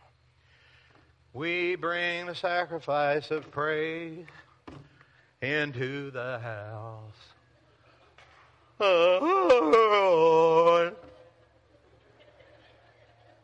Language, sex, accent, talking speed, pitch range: English, male, American, 50 wpm, 110-155 Hz